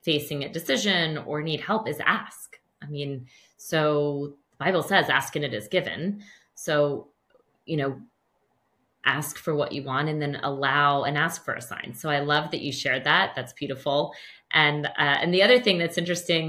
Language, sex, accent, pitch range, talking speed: English, female, American, 145-170 Hz, 190 wpm